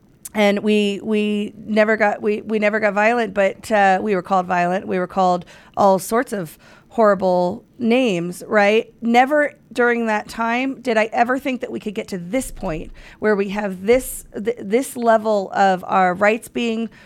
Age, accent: 40-59, American